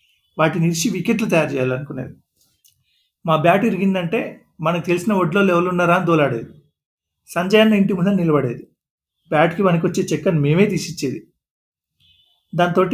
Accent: native